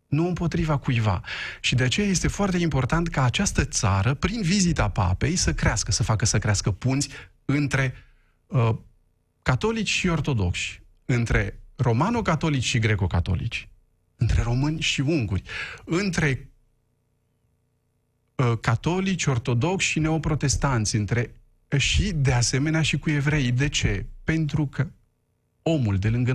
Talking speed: 125 wpm